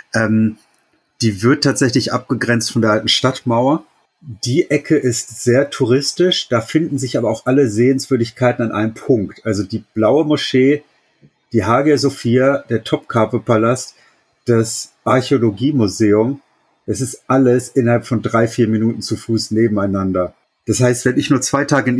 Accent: German